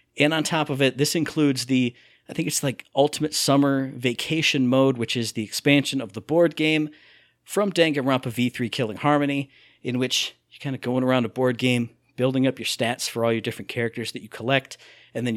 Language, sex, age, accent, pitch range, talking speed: English, male, 40-59, American, 120-150 Hz, 205 wpm